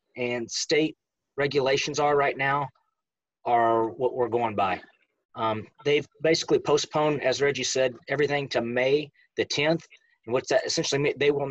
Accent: American